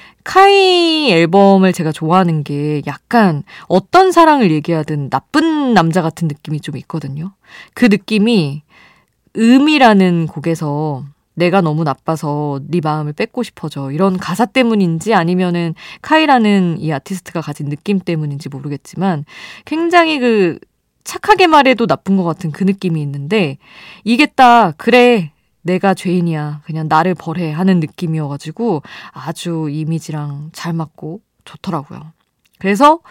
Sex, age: female, 20-39